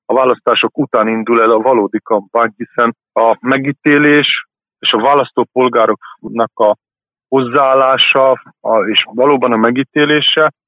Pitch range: 110-135 Hz